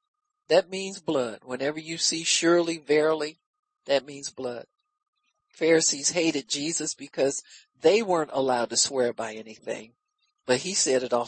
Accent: American